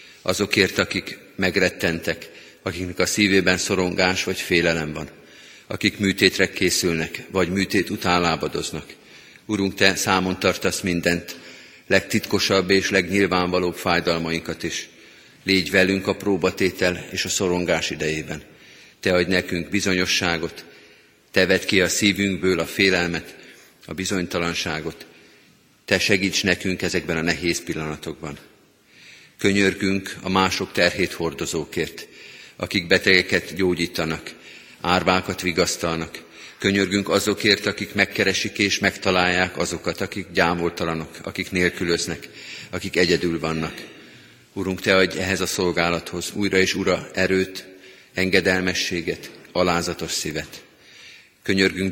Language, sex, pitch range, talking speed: Hungarian, male, 85-95 Hz, 105 wpm